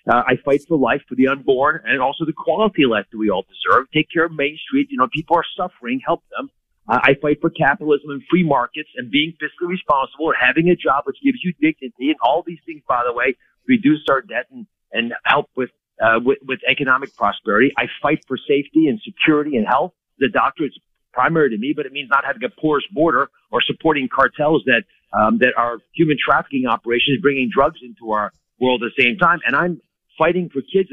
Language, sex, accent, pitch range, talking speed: English, male, American, 135-195 Hz, 225 wpm